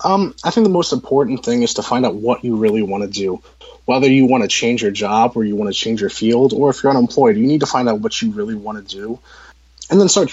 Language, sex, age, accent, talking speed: English, male, 20-39, American, 285 wpm